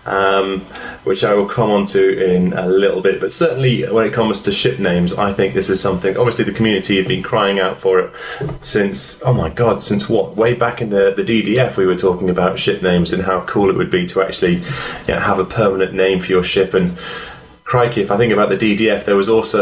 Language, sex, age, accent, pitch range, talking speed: English, male, 20-39, British, 95-115 Hz, 240 wpm